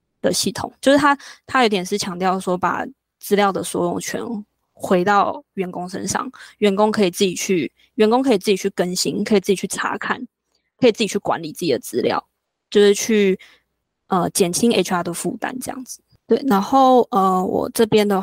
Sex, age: female, 20-39